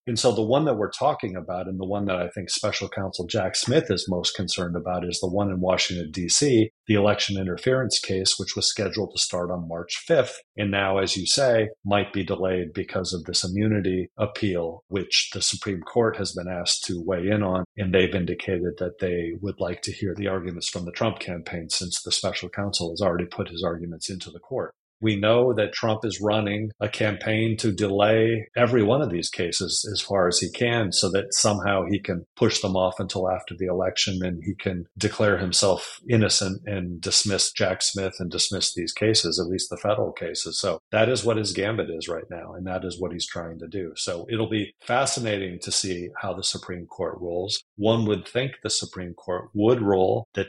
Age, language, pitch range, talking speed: 40-59, English, 90-105 Hz, 215 wpm